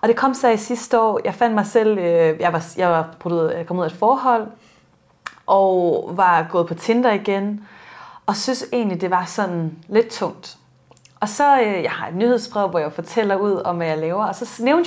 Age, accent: 30-49, native